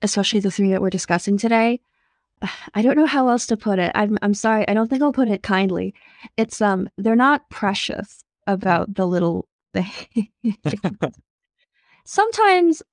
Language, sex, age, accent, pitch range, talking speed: English, female, 20-39, American, 180-225 Hz, 160 wpm